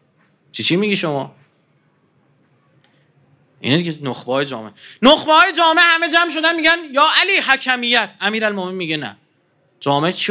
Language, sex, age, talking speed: Persian, male, 40-59, 120 wpm